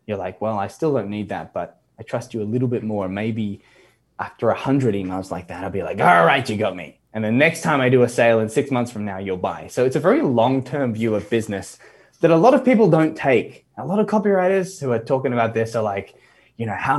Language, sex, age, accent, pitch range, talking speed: English, male, 10-29, Australian, 110-150 Hz, 265 wpm